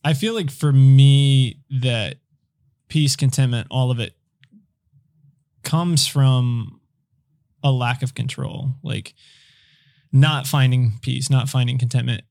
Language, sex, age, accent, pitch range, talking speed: English, male, 20-39, American, 125-140 Hz, 115 wpm